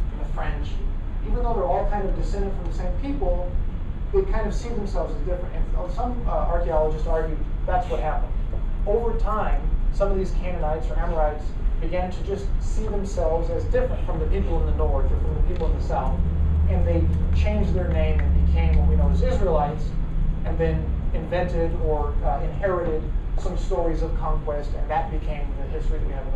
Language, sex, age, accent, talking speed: English, male, 30-49, American, 195 wpm